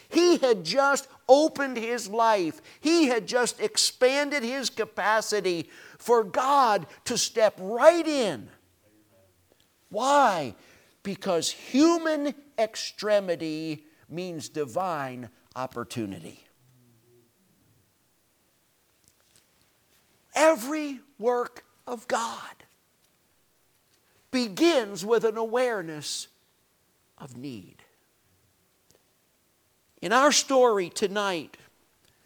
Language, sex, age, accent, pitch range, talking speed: English, male, 50-69, American, 155-250 Hz, 75 wpm